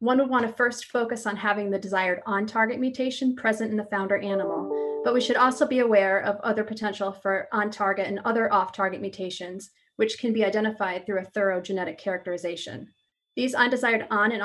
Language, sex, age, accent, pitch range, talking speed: English, female, 30-49, American, 200-235 Hz, 185 wpm